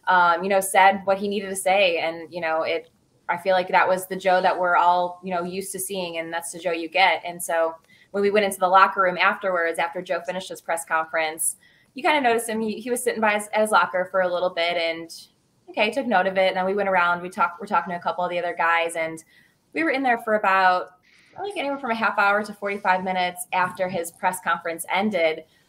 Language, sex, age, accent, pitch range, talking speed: English, female, 20-39, American, 170-195 Hz, 255 wpm